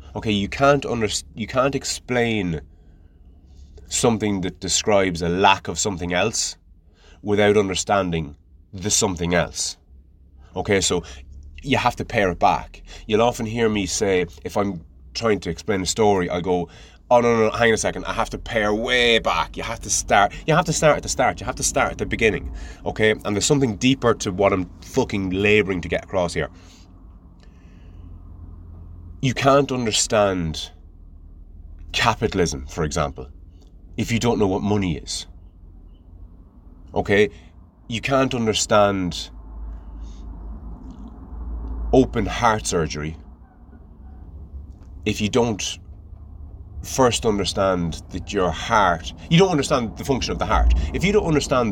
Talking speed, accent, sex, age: 145 wpm, British, male, 30-49